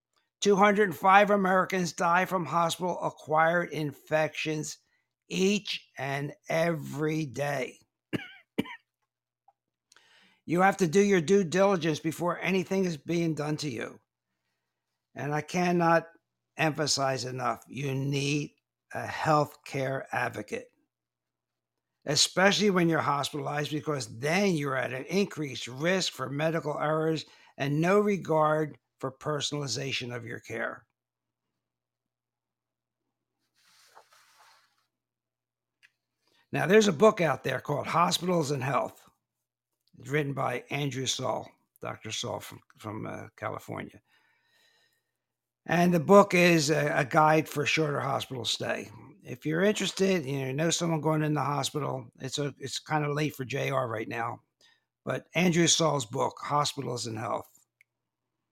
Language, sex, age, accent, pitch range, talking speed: English, male, 60-79, American, 140-175 Hz, 120 wpm